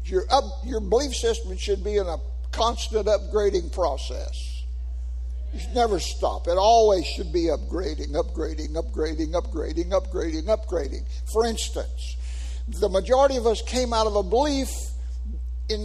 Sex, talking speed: male, 145 wpm